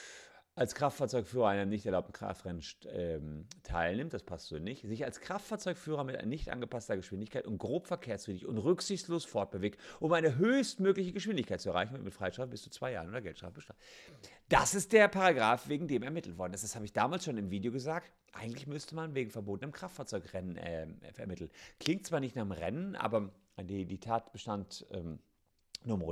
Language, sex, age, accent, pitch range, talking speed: German, male, 40-59, German, 100-150 Hz, 185 wpm